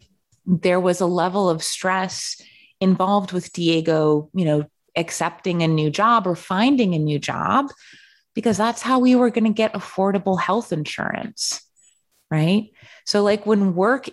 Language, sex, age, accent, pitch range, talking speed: English, female, 20-39, American, 160-225 Hz, 155 wpm